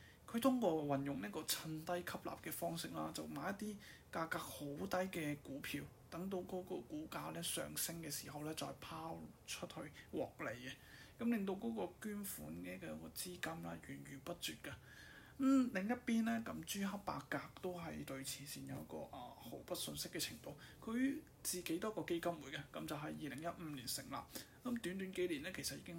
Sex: male